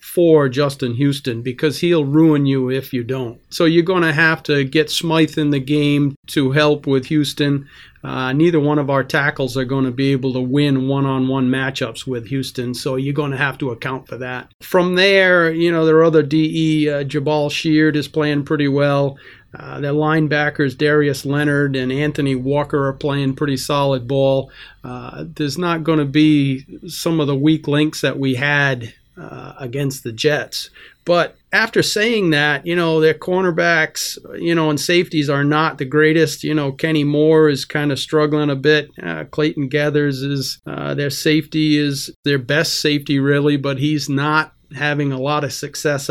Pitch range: 140-155 Hz